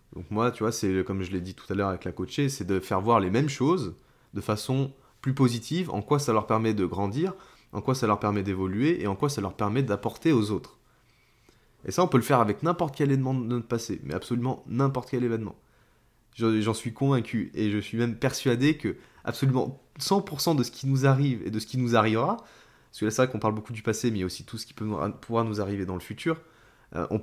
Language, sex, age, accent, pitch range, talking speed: French, male, 20-39, French, 105-130 Hz, 240 wpm